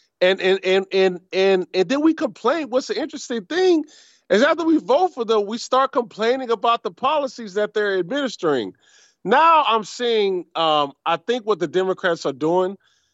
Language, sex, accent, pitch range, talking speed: English, male, American, 135-180 Hz, 180 wpm